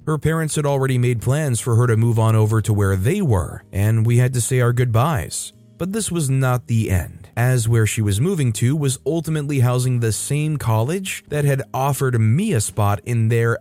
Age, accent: 30-49, American